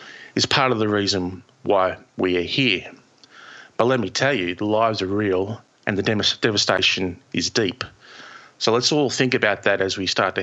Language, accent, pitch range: English, Australian, 100-125 Hz